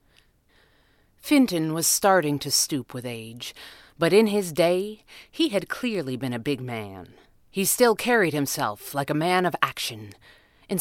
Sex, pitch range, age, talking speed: female, 130-205 Hz, 40-59, 155 wpm